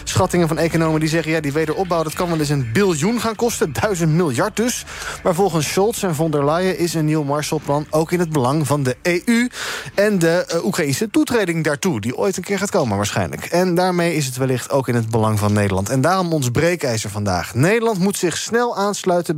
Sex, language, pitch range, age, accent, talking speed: male, Dutch, 135-185 Hz, 20-39, Dutch, 220 wpm